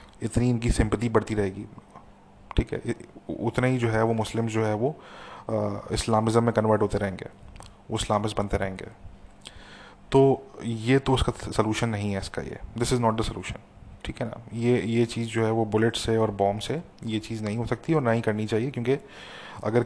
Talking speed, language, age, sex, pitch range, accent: 190 wpm, English, 30-49, male, 105-120 Hz, Indian